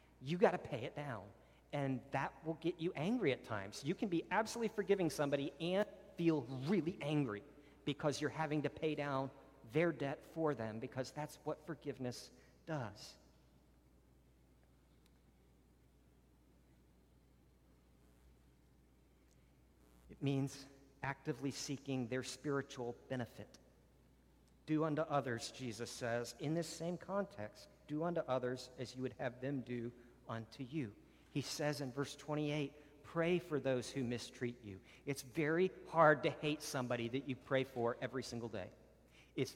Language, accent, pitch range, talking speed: English, American, 120-155 Hz, 140 wpm